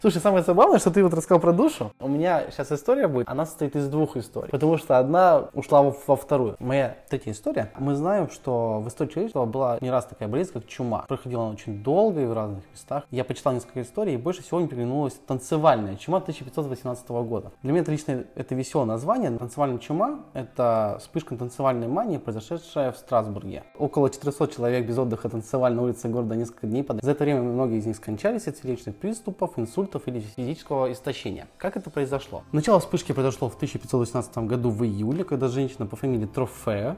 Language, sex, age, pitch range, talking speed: Russian, male, 20-39, 120-150 Hz, 190 wpm